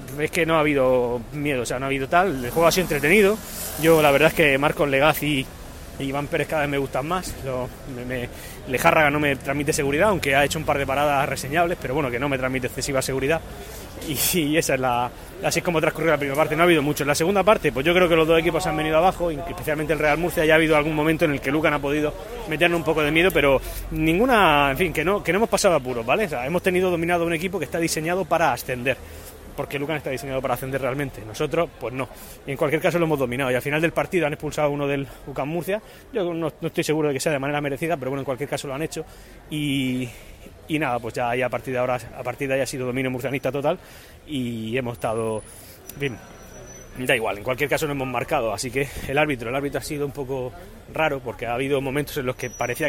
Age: 20-39